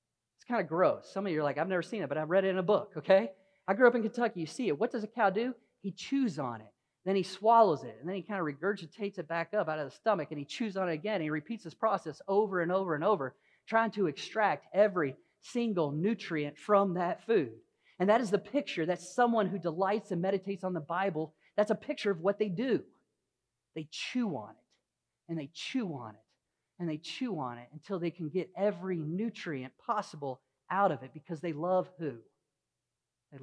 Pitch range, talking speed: 160-210 Hz, 230 wpm